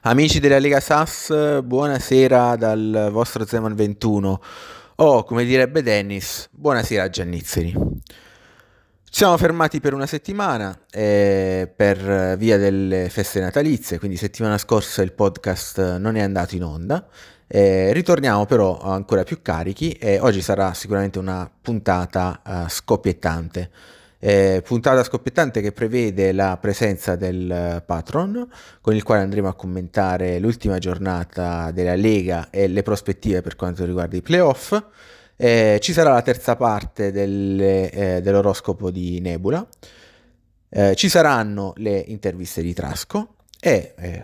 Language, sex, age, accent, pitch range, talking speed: Italian, male, 30-49, native, 95-115 Hz, 135 wpm